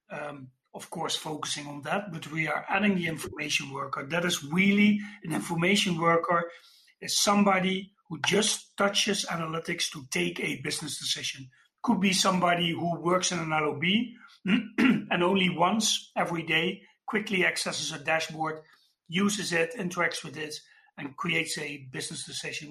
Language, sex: English, male